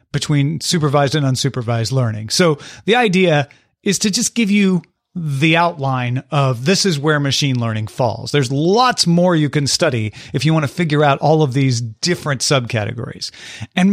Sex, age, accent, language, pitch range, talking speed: male, 40-59, American, English, 130-180 Hz, 170 wpm